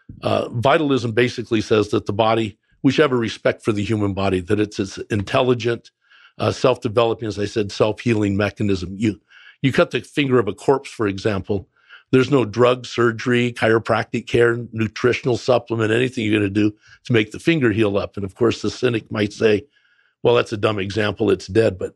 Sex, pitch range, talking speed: male, 105-120 Hz, 195 wpm